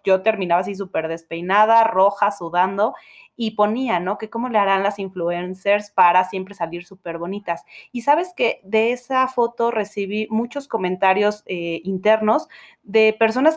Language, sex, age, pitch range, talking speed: Spanish, female, 20-39, 180-220 Hz, 150 wpm